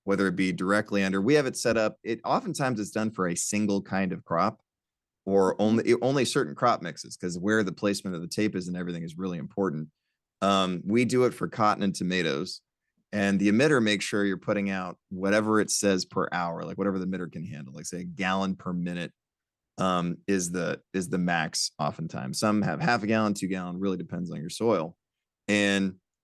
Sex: male